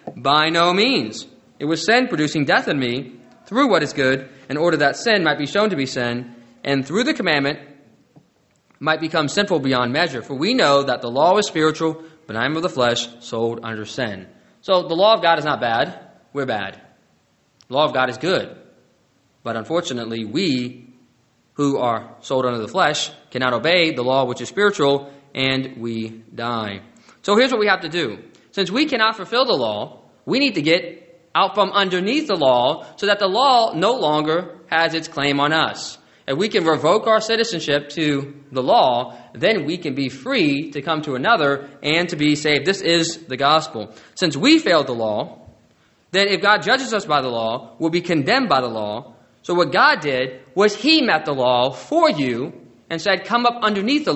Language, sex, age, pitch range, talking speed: English, male, 20-39, 130-185 Hz, 200 wpm